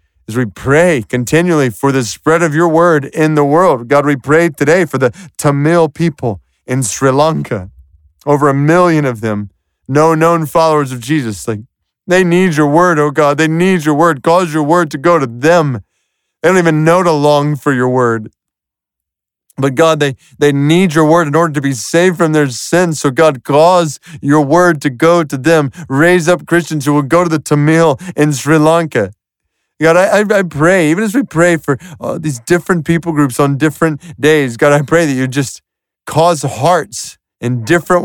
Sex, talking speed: male, 195 wpm